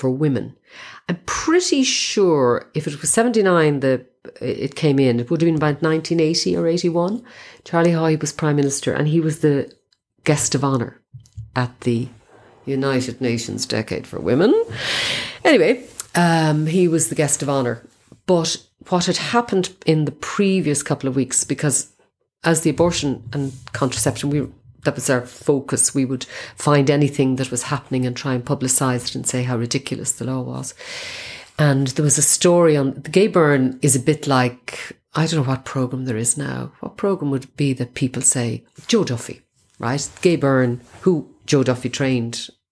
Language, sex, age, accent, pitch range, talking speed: English, female, 40-59, Irish, 125-160 Hz, 175 wpm